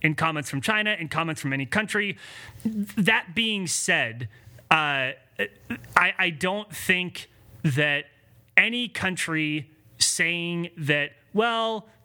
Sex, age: male, 30-49